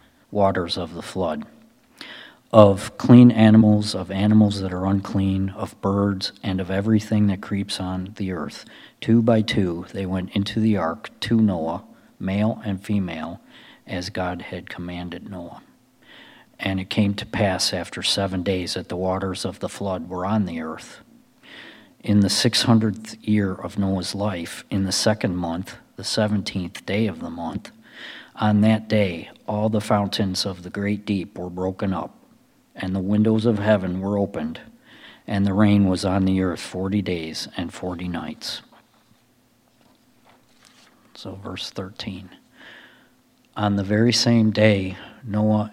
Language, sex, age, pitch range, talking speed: English, male, 40-59, 95-105 Hz, 150 wpm